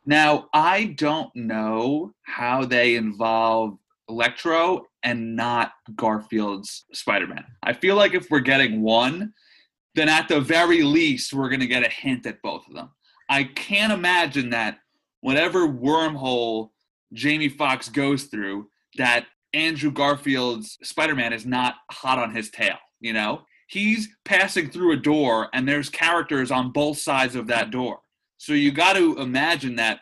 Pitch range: 120-160 Hz